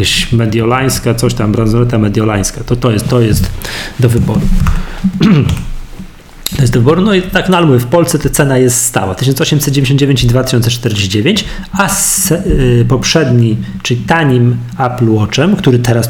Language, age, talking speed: Polish, 40-59, 150 wpm